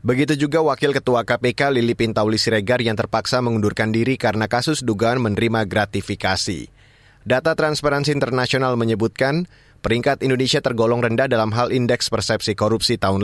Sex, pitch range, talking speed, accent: male, 115-140 Hz, 140 wpm, native